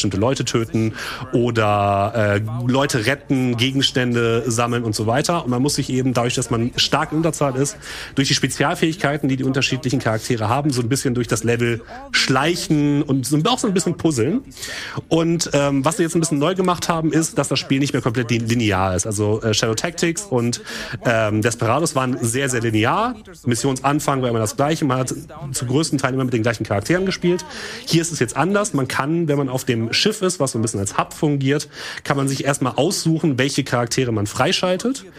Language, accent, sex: German, German, male